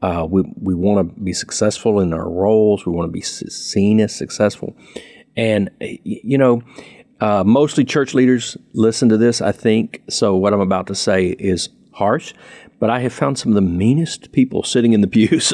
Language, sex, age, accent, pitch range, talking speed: English, male, 50-69, American, 90-120 Hz, 195 wpm